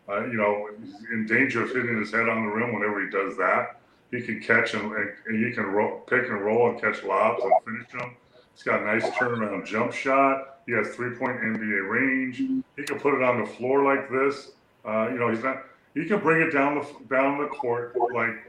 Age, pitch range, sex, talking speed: 30-49, 110-130 Hz, female, 235 wpm